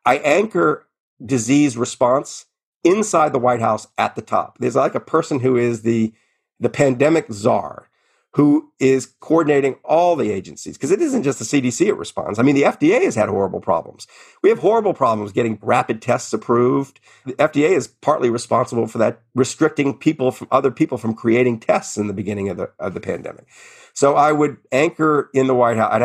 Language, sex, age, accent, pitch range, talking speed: English, male, 50-69, American, 110-145 Hz, 190 wpm